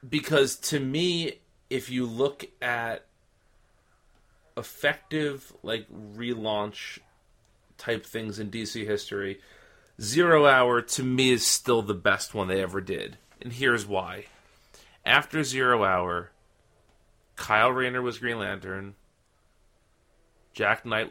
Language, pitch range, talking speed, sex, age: English, 105-130 Hz, 110 wpm, male, 30-49